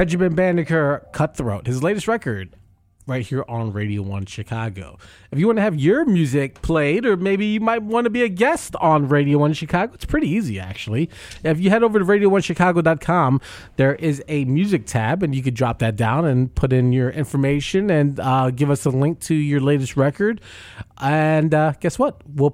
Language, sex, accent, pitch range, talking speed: English, male, American, 115-160 Hz, 195 wpm